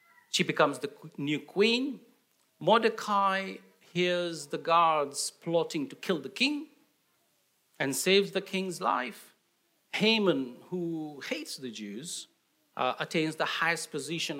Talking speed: 120 wpm